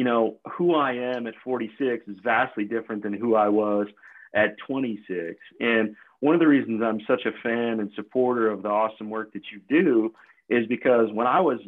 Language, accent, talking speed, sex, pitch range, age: English, American, 200 wpm, male, 105-125 Hz, 40-59